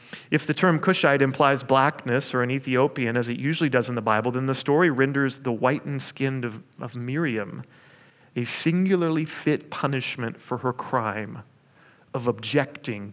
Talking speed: 160 wpm